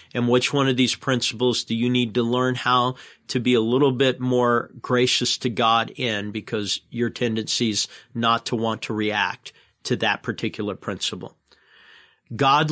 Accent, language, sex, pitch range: American, English, male, 110-125 Hz